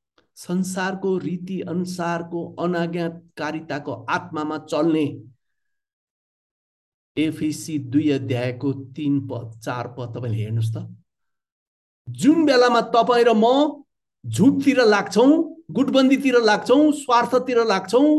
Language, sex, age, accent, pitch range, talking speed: Marathi, male, 60-79, native, 145-230 Hz, 70 wpm